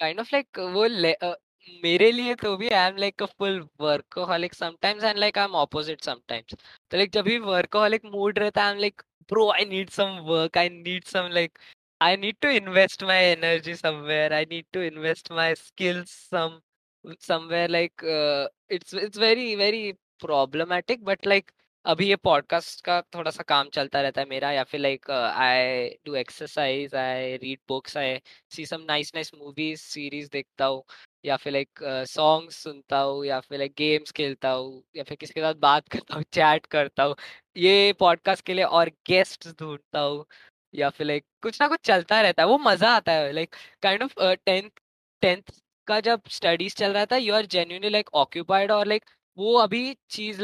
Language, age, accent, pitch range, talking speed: Hindi, 10-29, native, 150-200 Hz, 180 wpm